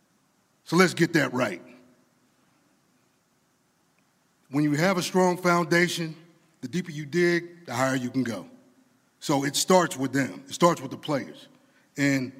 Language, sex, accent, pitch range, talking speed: English, male, American, 145-180 Hz, 150 wpm